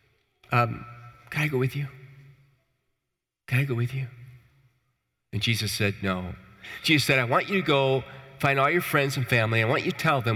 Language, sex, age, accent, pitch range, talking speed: English, male, 40-59, American, 105-135 Hz, 195 wpm